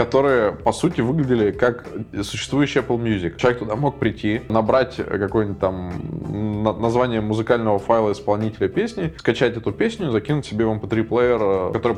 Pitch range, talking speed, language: 100-120 Hz, 150 wpm, Russian